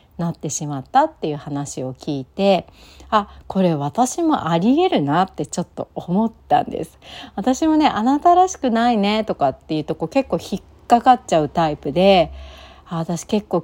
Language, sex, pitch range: Japanese, female, 160-220 Hz